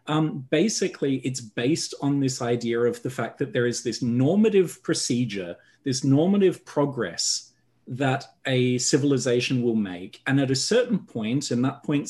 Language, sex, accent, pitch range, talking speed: English, male, Australian, 125-155 Hz, 160 wpm